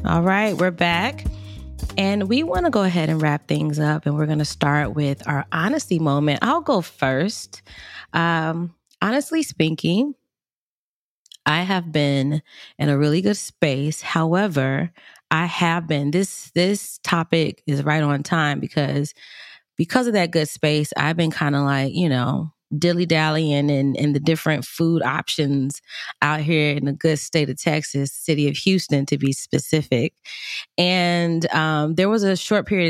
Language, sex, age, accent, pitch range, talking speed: English, female, 20-39, American, 145-175 Hz, 160 wpm